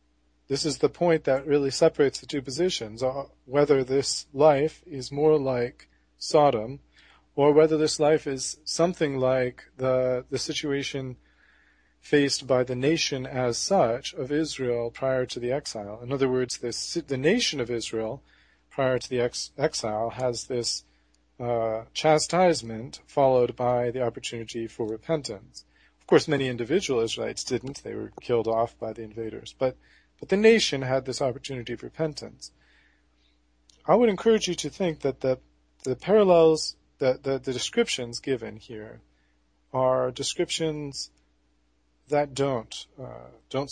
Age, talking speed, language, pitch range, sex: 40-59, 145 wpm, English, 115-145 Hz, male